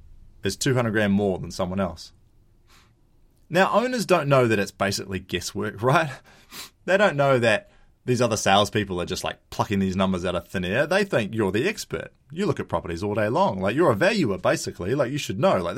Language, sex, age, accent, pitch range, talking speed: English, male, 20-39, Australian, 95-135 Hz, 210 wpm